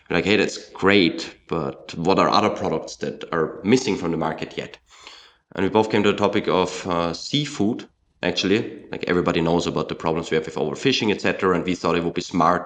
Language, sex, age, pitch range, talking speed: English, male, 20-39, 85-105 Hz, 215 wpm